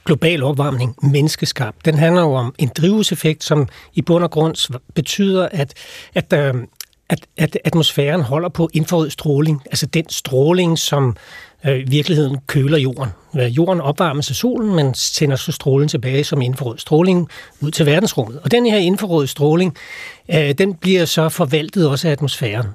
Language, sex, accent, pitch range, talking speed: Danish, male, native, 140-170 Hz, 155 wpm